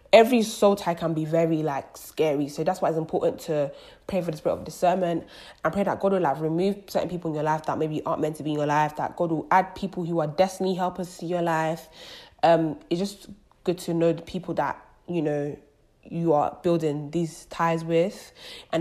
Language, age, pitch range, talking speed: English, 20-39, 155-190 Hz, 225 wpm